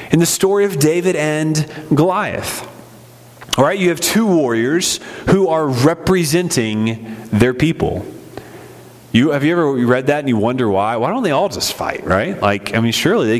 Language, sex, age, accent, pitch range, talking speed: English, male, 30-49, American, 130-195 Hz, 175 wpm